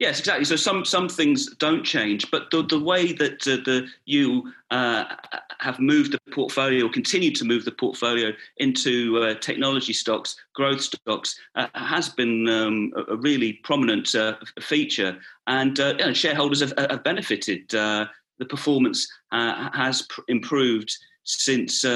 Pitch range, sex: 120-170 Hz, male